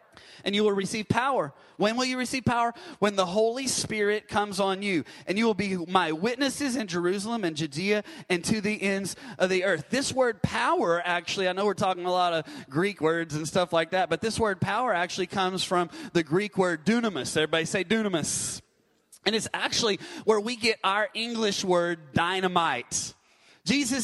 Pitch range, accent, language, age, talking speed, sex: 185-235 Hz, American, English, 30-49, 190 wpm, male